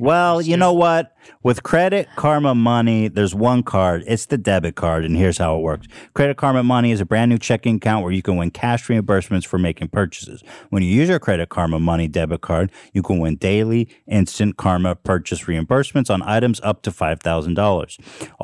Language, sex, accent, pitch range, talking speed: English, male, American, 95-125 Hz, 190 wpm